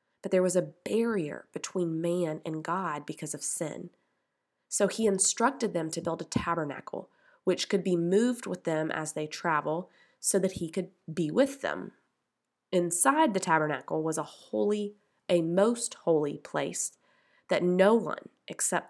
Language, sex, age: English, female, 20-39